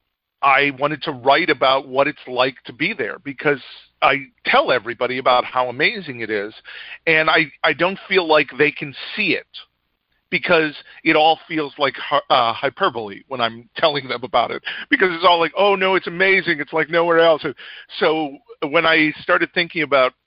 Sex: male